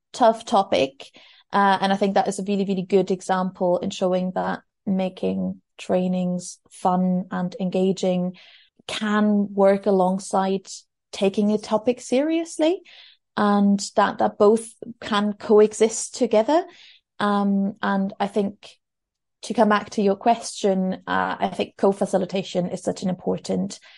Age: 20-39